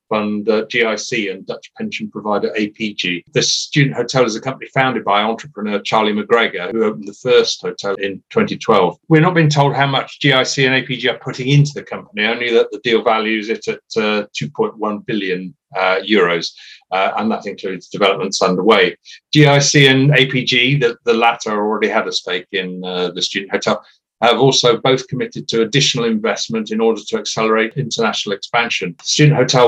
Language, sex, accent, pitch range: English, male, British, 105-140 Hz